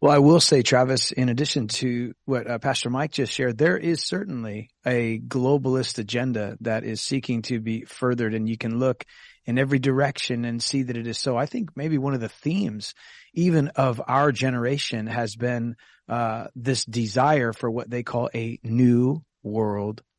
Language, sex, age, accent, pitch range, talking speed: English, male, 30-49, American, 115-145 Hz, 185 wpm